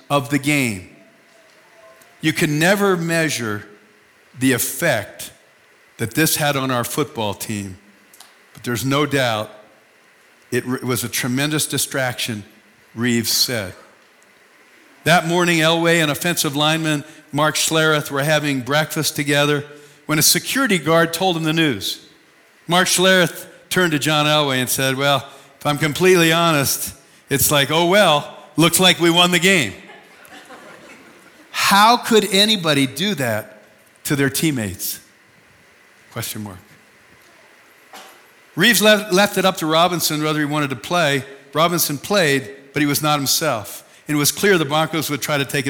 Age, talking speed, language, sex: 50-69, 145 wpm, English, male